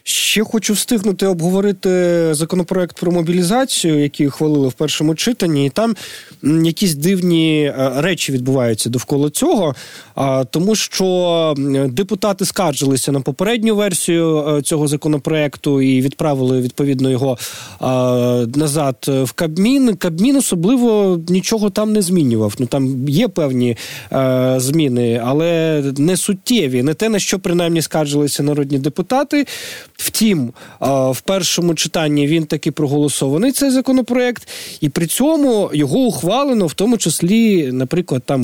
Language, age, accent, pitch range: Ukrainian, 20-39, native, 140-195 Hz